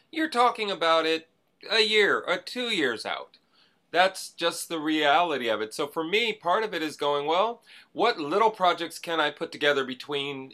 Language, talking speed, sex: English, 190 wpm, male